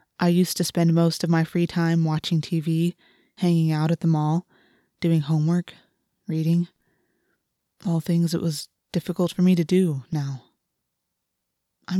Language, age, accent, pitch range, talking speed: English, 20-39, American, 155-175 Hz, 150 wpm